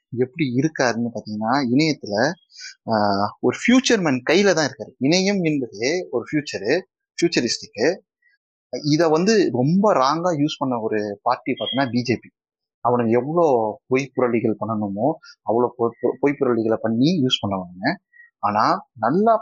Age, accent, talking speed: 30-49, native, 115 wpm